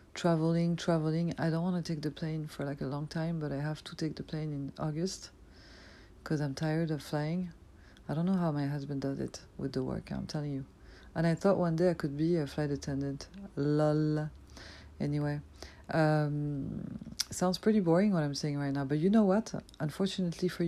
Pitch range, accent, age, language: 145-175 Hz, French, 50-69, English